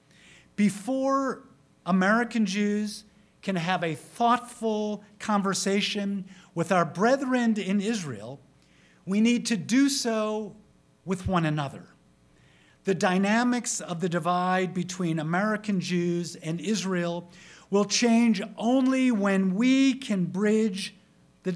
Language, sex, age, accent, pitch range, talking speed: English, male, 50-69, American, 175-220 Hz, 110 wpm